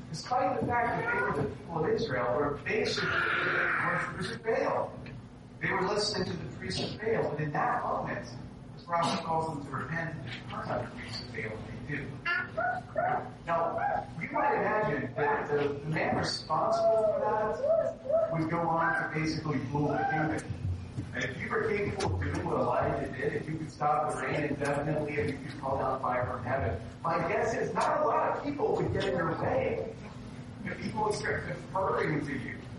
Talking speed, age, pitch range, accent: 200 wpm, 40-59, 130-190 Hz, American